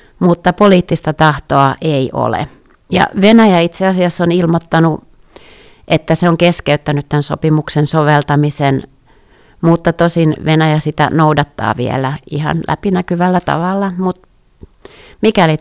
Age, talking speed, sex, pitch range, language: 30-49, 110 wpm, female, 150-180 Hz, Finnish